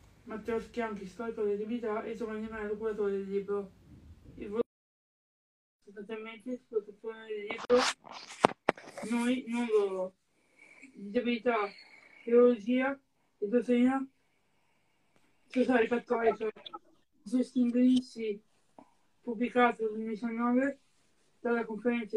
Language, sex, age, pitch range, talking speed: Italian, female, 20-39, 215-245 Hz, 90 wpm